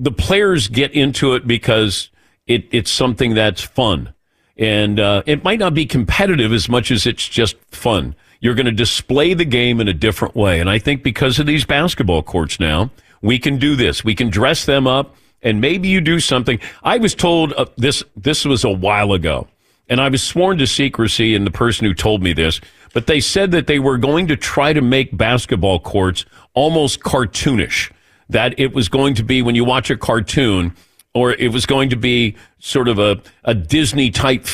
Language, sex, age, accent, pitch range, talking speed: English, male, 50-69, American, 105-135 Hz, 205 wpm